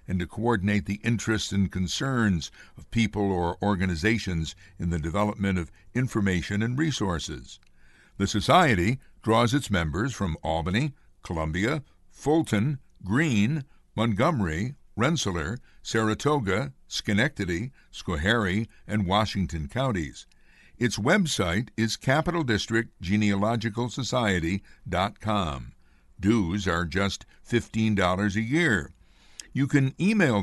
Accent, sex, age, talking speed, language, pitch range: American, male, 60-79, 95 wpm, English, 90-120 Hz